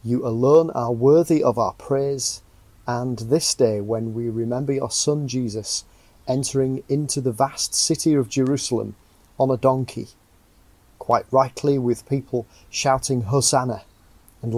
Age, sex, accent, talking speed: 30-49, male, British, 135 wpm